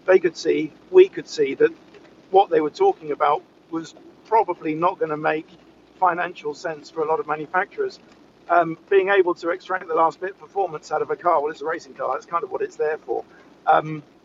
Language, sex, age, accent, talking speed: English, male, 50-69, British, 220 wpm